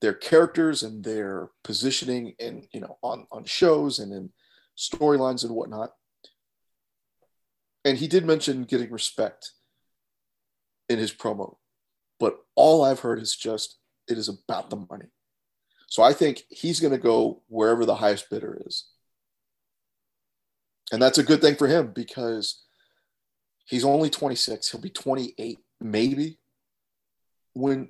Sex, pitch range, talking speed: male, 115-145 Hz, 140 wpm